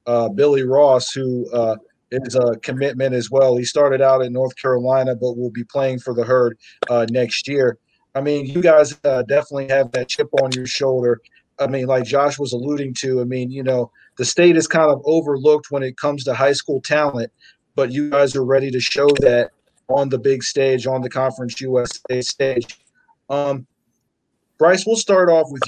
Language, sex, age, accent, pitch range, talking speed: English, male, 40-59, American, 130-145 Hz, 200 wpm